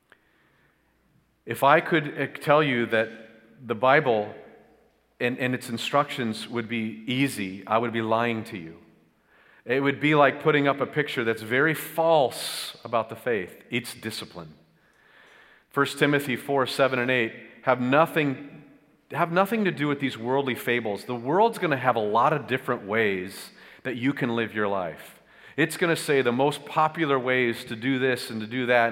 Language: English